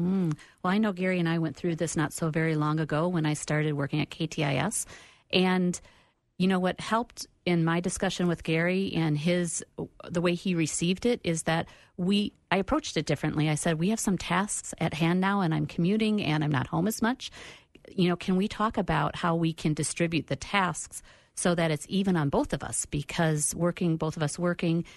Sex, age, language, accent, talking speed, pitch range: female, 50-69, English, American, 215 wpm, 150-180 Hz